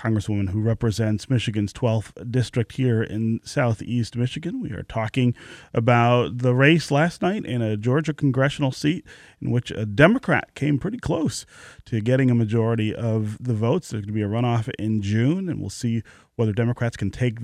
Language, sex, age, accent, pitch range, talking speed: English, male, 30-49, American, 105-135 Hz, 180 wpm